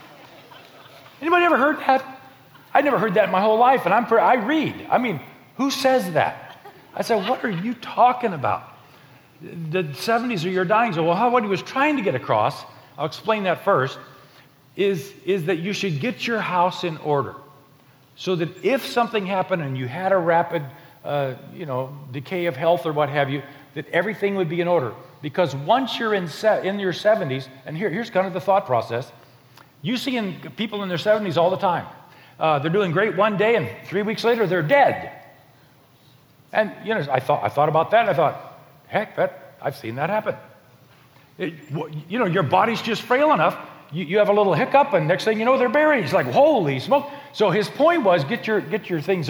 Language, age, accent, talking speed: English, 40-59, American, 210 wpm